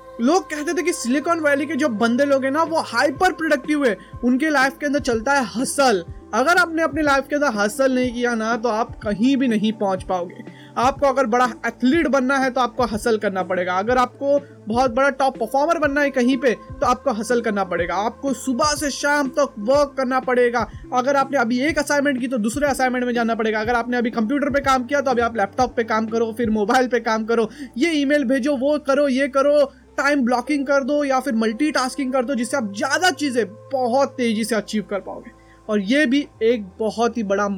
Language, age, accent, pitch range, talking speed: Hindi, 20-39, native, 225-275 Hz, 220 wpm